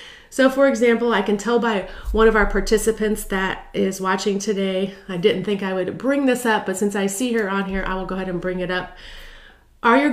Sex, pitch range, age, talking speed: female, 185-235 Hz, 30-49, 235 wpm